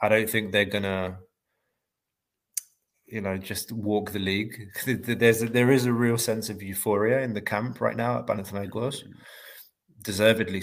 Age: 20-39